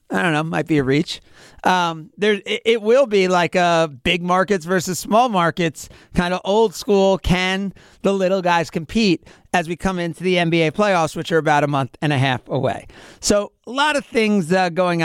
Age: 40-59